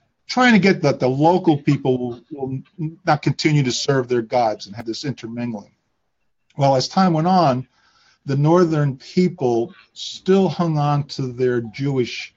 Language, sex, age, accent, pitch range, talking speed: English, male, 50-69, American, 125-160 Hz, 155 wpm